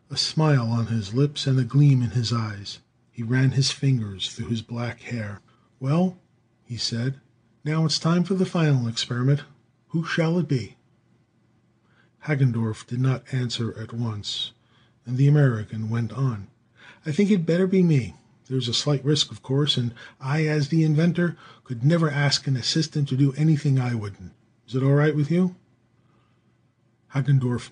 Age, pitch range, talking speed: 40-59, 115-145 Hz, 170 wpm